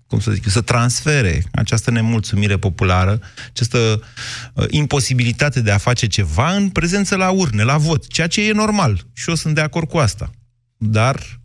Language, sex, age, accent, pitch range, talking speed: Romanian, male, 30-49, native, 105-125 Hz, 170 wpm